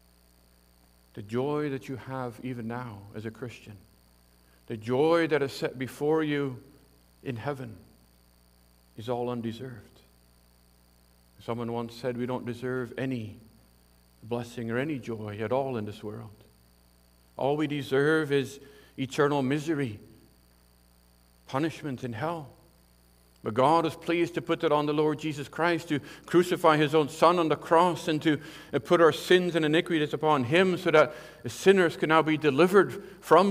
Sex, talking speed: male, 150 wpm